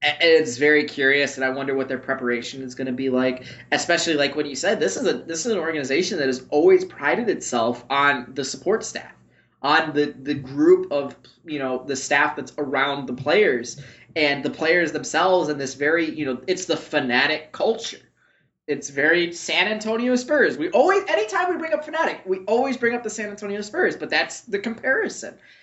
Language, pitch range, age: English, 135-205 Hz, 20-39